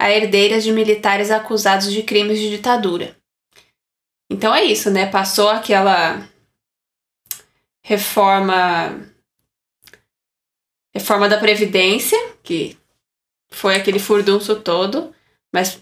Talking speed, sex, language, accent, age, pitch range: 95 wpm, female, Portuguese, Brazilian, 20-39, 195-220 Hz